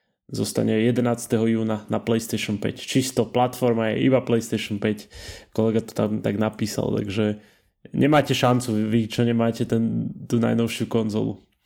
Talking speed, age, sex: 140 wpm, 20-39, male